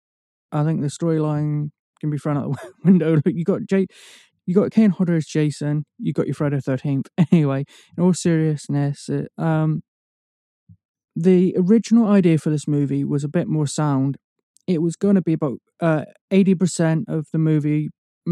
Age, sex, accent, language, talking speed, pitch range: 20-39, male, British, English, 175 wpm, 150-180 Hz